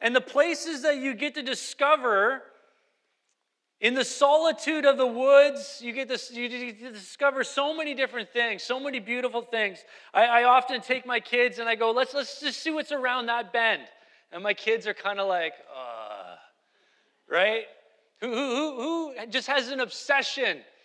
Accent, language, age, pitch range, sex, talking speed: American, English, 30-49, 230-290 Hz, male, 180 wpm